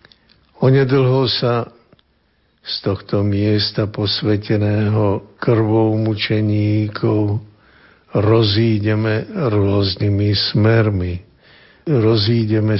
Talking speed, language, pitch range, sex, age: 55 wpm, Slovak, 105-130 Hz, male, 60-79